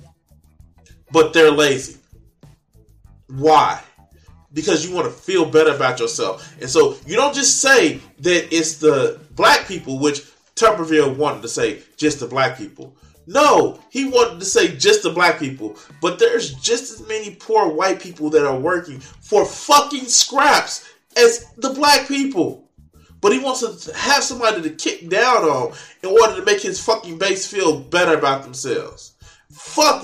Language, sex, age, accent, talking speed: English, male, 20-39, American, 160 wpm